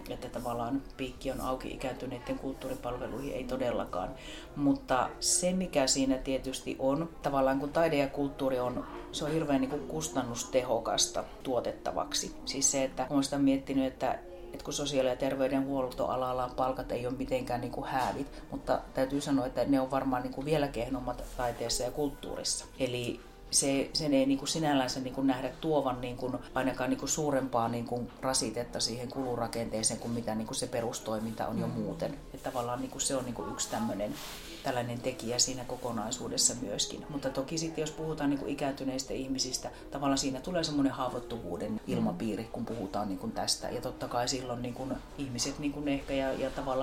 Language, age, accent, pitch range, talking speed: Finnish, 40-59, native, 125-140 Hz, 170 wpm